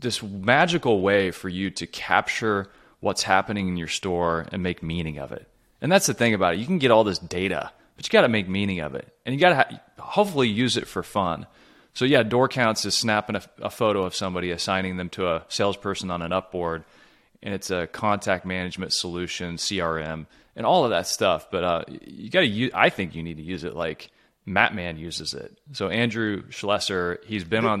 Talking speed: 215 wpm